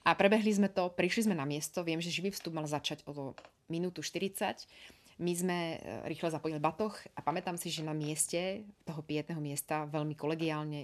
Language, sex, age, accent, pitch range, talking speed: Czech, female, 30-49, native, 145-165 Hz, 185 wpm